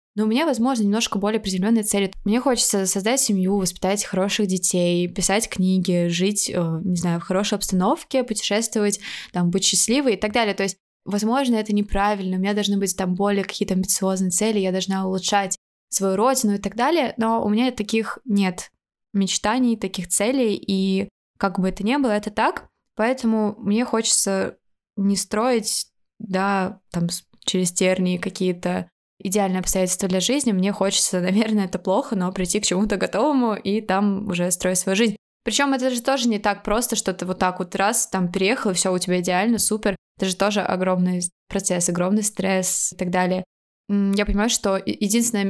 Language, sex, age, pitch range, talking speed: Russian, female, 20-39, 185-220 Hz, 175 wpm